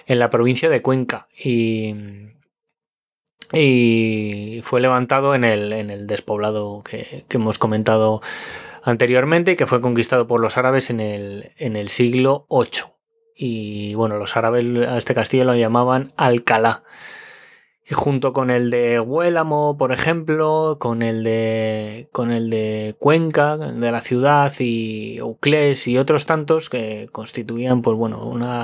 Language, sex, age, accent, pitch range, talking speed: Spanish, male, 20-39, Spanish, 115-140 Hz, 145 wpm